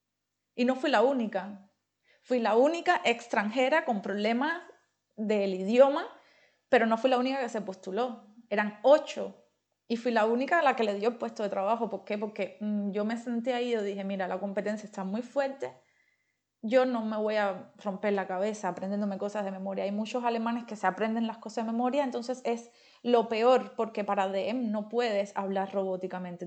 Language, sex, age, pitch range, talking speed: Spanish, female, 30-49, 200-245 Hz, 190 wpm